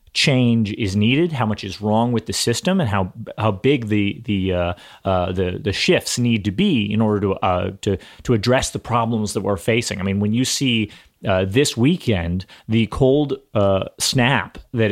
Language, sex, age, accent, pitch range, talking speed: English, male, 30-49, American, 100-135 Hz, 195 wpm